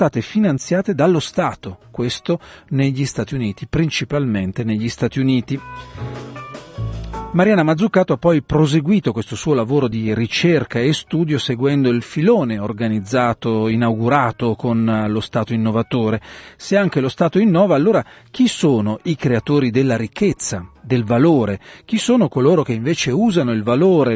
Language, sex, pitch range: Italian, male, 115-160 Hz